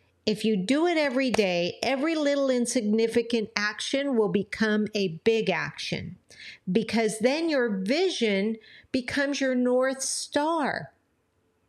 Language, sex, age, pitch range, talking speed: English, female, 50-69, 195-250 Hz, 120 wpm